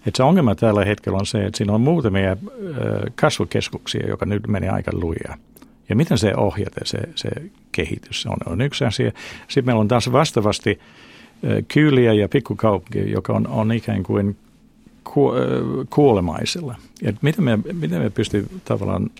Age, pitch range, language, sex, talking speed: 60-79, 100-120 Hz, Finnish, male, 150 wpm